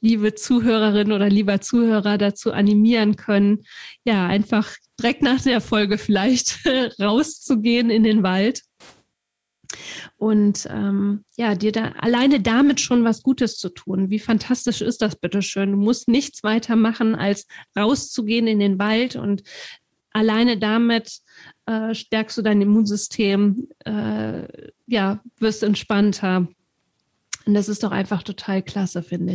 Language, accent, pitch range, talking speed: German, German, 200-230 Hz, 135 wpm